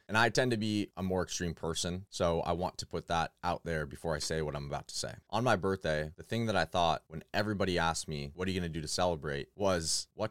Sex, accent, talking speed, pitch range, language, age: male, American, 270 wpm, 80-105 Hz, English, 20-39